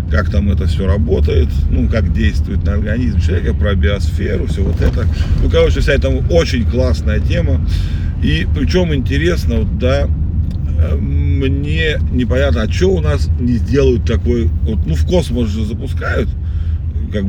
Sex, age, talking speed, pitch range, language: male, 40-59, 155 wpm, 80-90 Hz, Russian